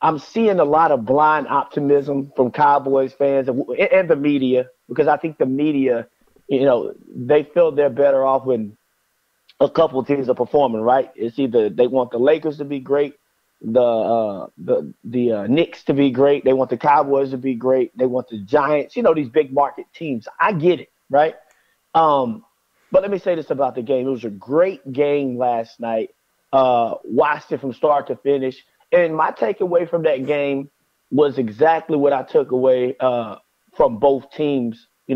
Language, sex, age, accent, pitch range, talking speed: English, male, 30-49, American, 130-160 Hz, 195 wpm